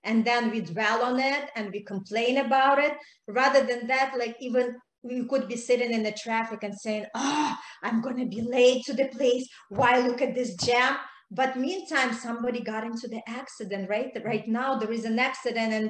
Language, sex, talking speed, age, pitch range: English, female, 205 wpm, 30-49, 210-245 Hz